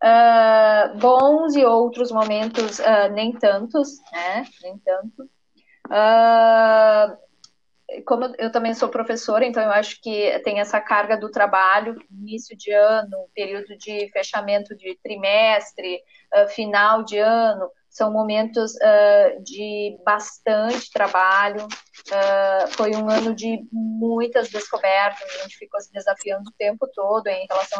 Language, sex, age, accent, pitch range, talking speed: Portuguese, female, 20-39, Brazilian, 205-245 Hz, 130 wpm